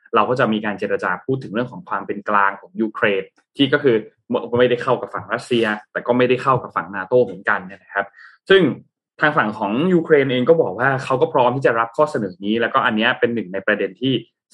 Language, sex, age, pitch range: Thai, male, 20-39, 110-150 Hz